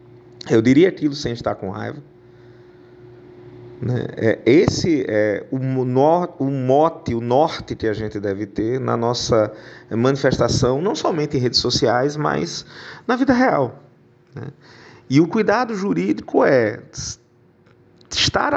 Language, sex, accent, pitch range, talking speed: Portuguese, male, Brazilian, 110-130 Hz, 115 wpm